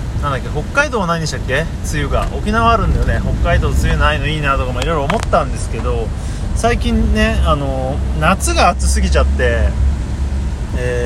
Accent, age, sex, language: native, 30-49, male, Japanese